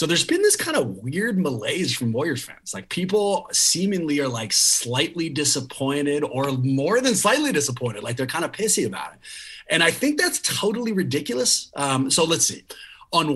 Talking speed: 185 wpm